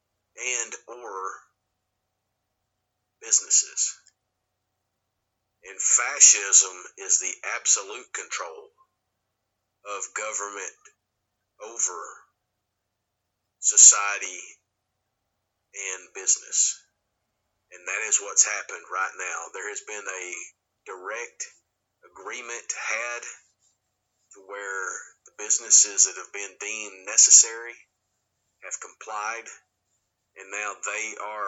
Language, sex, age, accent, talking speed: English, male, 40-59, American, 85 wpm